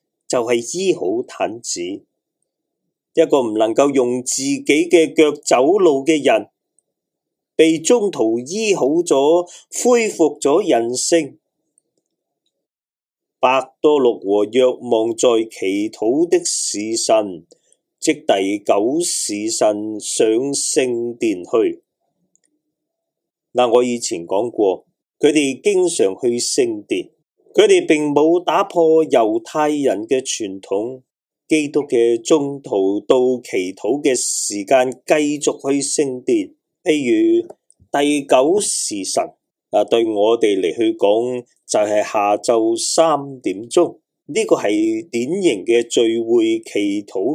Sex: male